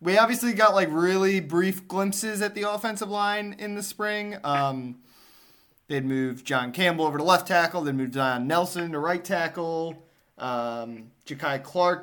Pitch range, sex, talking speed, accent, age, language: 130-170 Hz, male, 165 wpm, American, 20-39, English